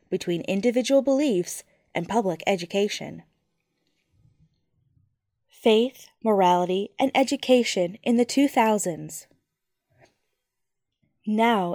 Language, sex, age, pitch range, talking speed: English, female, 10-29, 185-260 Hz, 70 wpm